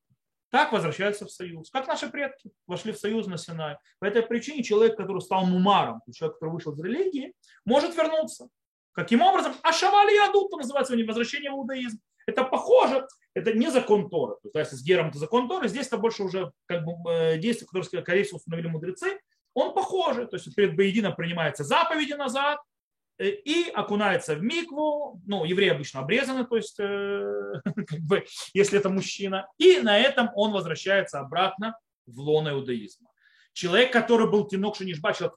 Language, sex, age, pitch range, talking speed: Russian, male, 30-49, 175-245 Hz, 165 wpm